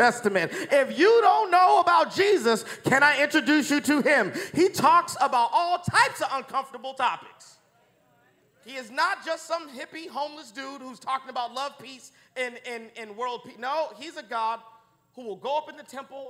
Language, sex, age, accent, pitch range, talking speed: English, male, 40-59, American, 220-295 Hz, 185 wpm